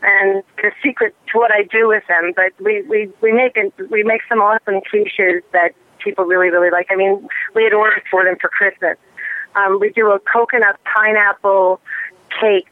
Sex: female